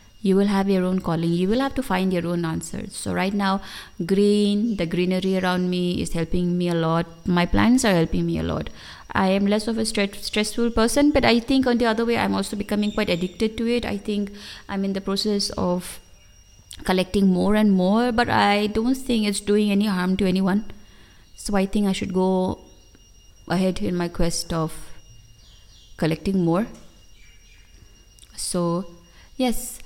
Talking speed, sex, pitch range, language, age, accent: 185 wpm, female, 160-210 Hz, English, 20-39, Indian